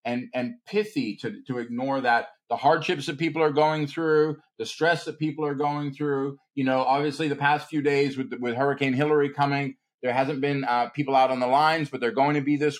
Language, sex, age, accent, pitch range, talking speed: English, male, 40-59, American, 125-155 Hz, 225 wpm